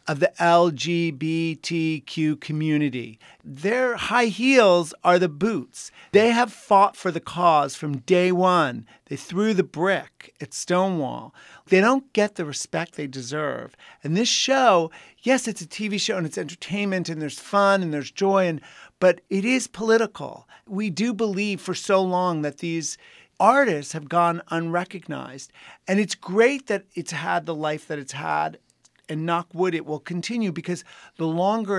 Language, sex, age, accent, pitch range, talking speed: English, male, 40-59, American, 155-190 Hz, 160 wpm